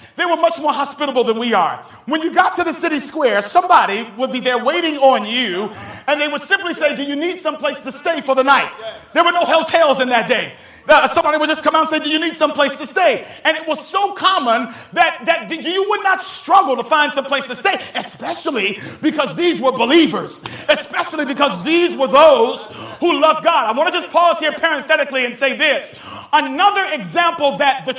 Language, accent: English, American